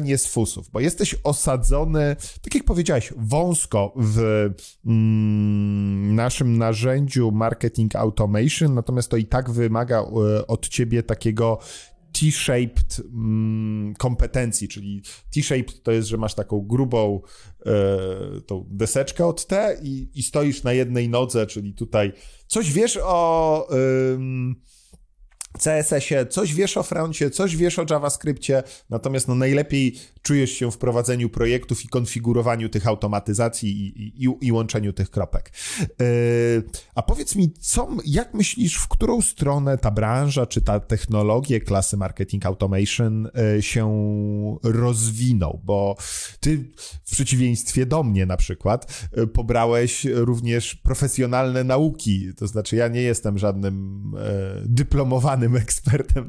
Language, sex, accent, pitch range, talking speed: Polish, male, native, 105-135 Hz, 130 wpm